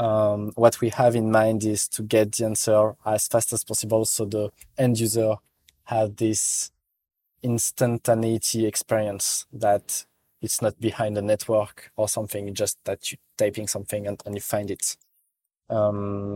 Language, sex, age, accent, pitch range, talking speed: English, male, 20-39, French, 105-115 Hz, 155 wpm